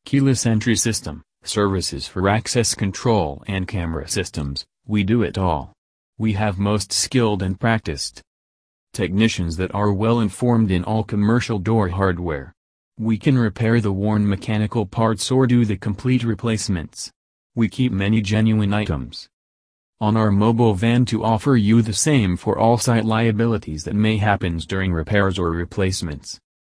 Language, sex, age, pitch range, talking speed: English, male, 30-49, 90-110 Hz, 150 wpm